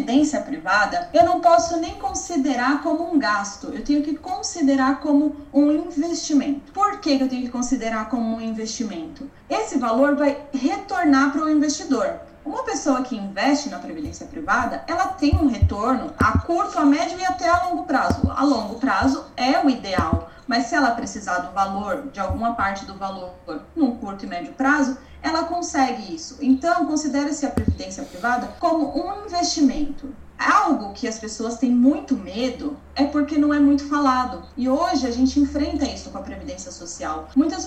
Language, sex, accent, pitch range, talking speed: Portuguese, female, Brazilian, 245-300 Hz, 175 wpm